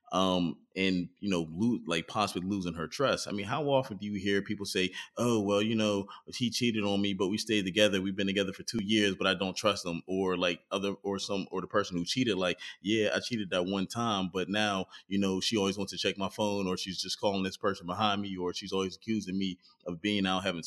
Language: English